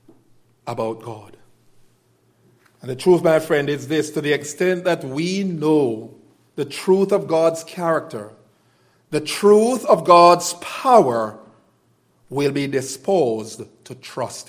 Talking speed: 125 wpm